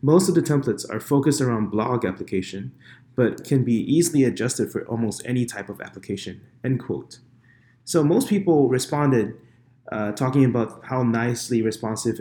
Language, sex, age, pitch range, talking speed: English, male, 20-39, 110-135 Hz, 155 wpm